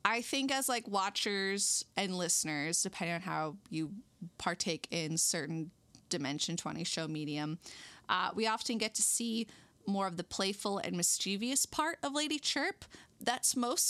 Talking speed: 155 wpm